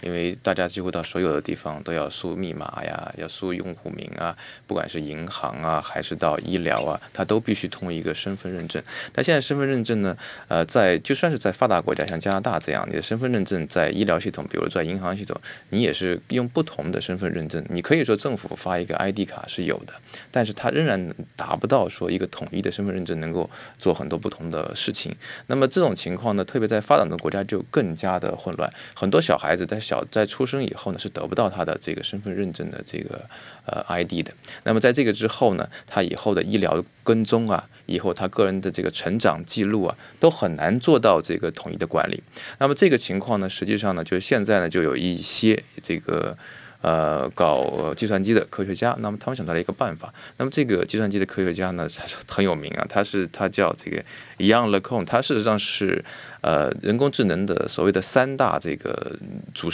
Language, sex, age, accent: Chinese, male, 20-39, native